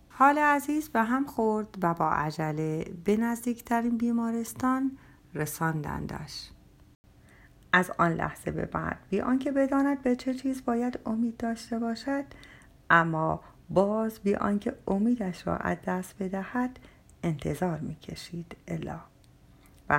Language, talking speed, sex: Persian, 120 wpm, female